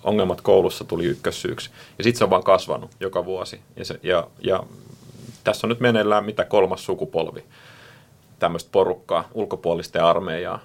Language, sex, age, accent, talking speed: Finnish, male, 30-49, native, 160 wpm